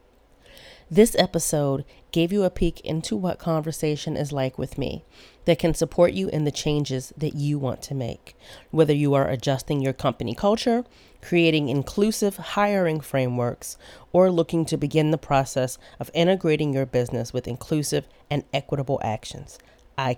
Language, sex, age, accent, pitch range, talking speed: English, female, 40-59, American, 130-160 Hz, 155 wpm